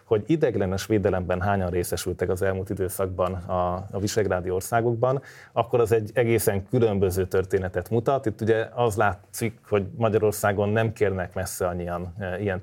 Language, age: Hungarian, 30-49